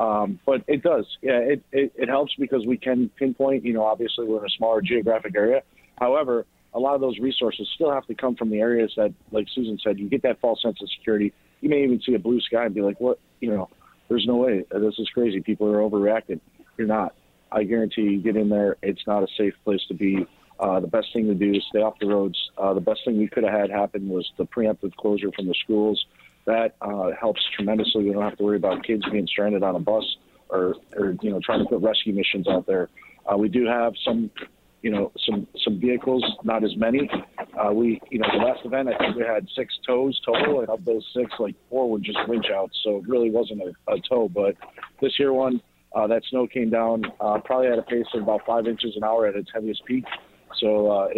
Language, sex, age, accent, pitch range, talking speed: English, male, 40-59, American, 105-125 Hz, 245 wpm